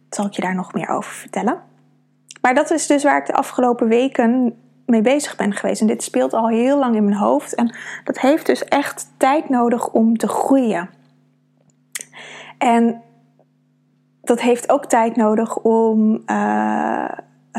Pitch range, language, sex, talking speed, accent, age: 215-255 Hz, Dutch, female, 165 wpm, Dutch, 20-39